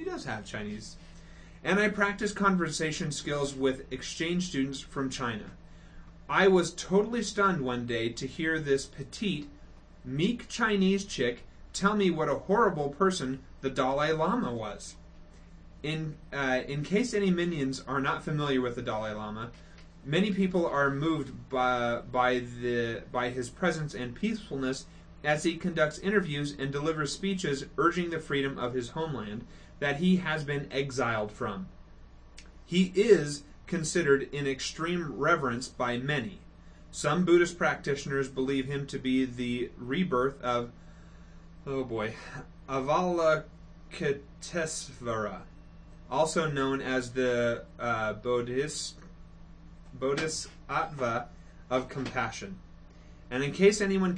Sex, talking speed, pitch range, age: male, 125 wpm, 125-170 Hz, 30-49